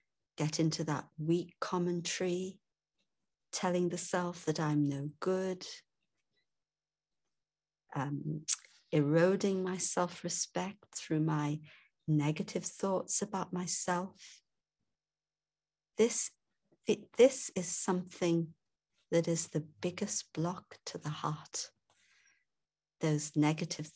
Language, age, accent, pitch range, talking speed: English, 50-69, British, 150-180 Hz, 90 wpm